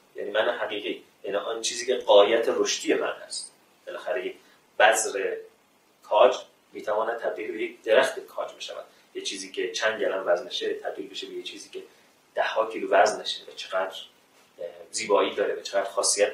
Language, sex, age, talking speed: Persian, male, 30-49, 165 wpm